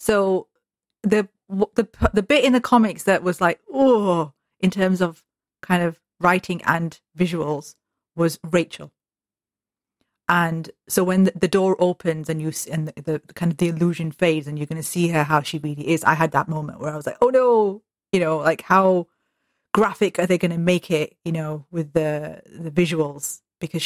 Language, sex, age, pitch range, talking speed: English, female, 30-49, 160-190 Hz, 195 wpm